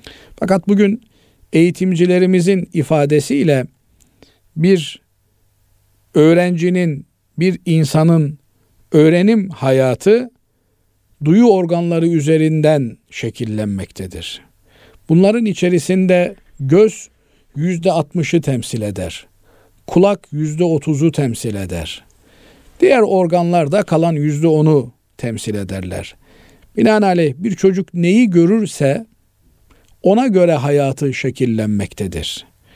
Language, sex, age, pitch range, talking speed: Turkish, male, 50-69, 115-180 Hz, 80 wpm